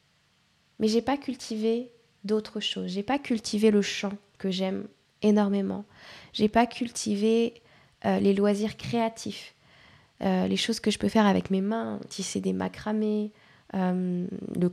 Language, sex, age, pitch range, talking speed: French, female, 20-39, 200-230 Hz, 155 wpm